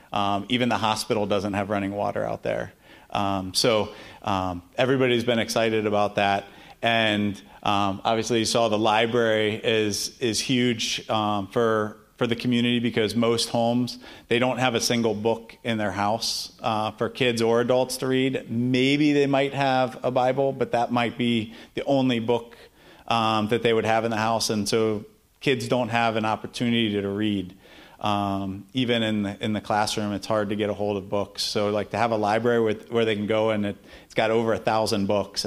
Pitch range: 105-120 Hz